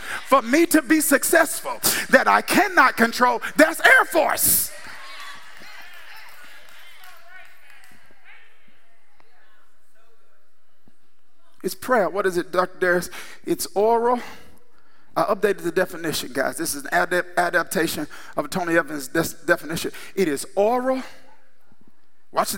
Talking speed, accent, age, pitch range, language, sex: 110 wpm, American, 50-69, 205-300 Hz, English, male